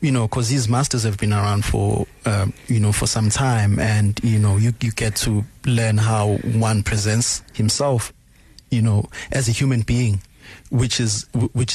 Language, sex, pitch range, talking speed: English, male, 105-125 Hz, 185 wpm